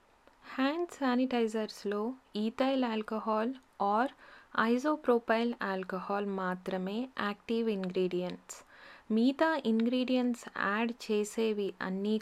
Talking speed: 75 wpm